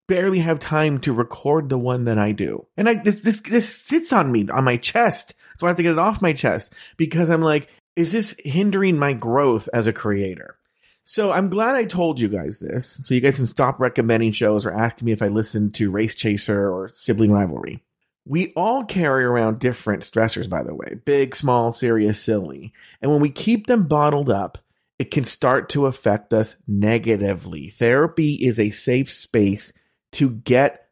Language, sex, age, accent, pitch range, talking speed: English, male, 30-49, American, 115-165 Hz, 200 wpm